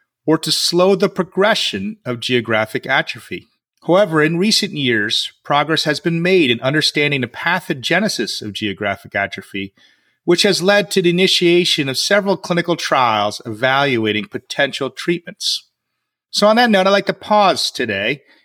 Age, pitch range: 40-59, 125-180 Hz